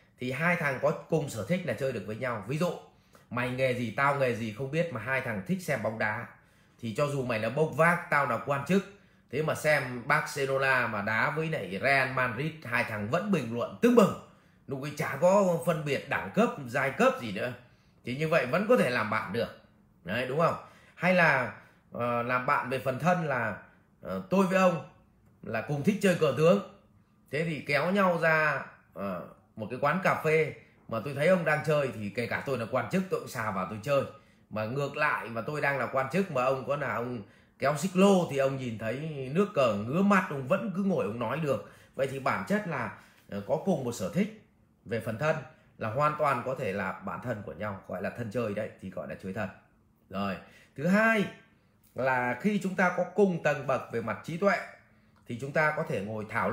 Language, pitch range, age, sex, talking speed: English, 115-165 Hz, 20-39, male, 230 wpm